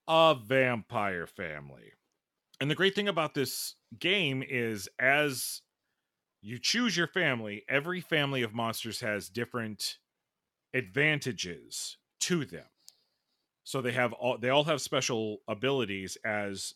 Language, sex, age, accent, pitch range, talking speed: English, male, 40-59, American, 110-155 Hz, 125 wpm